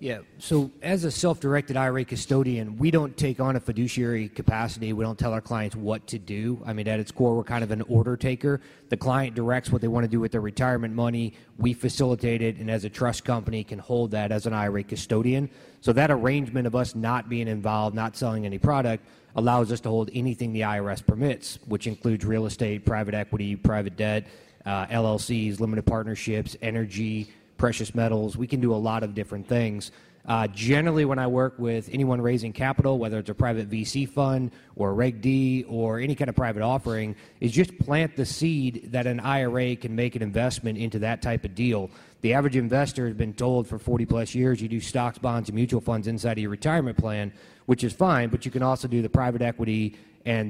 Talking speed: 210 wpm